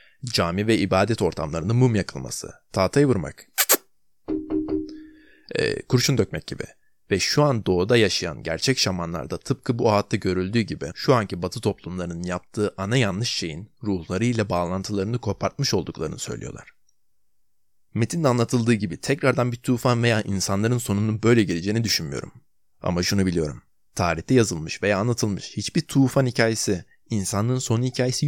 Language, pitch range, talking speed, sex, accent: Turkish, 90-120 Hz, 130 wpm, male, native